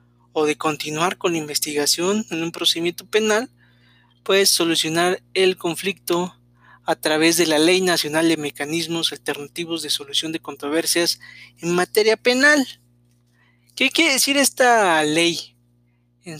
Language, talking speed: Spanish, 130 wpm